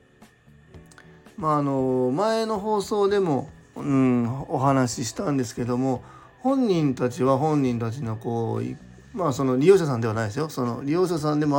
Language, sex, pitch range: Japanese, male, 120-155 Hz